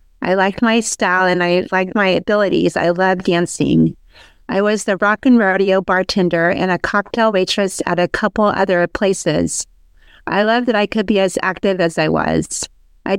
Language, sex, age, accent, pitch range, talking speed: English, female, 40-59, American, 180-215 Hz, 180 wpm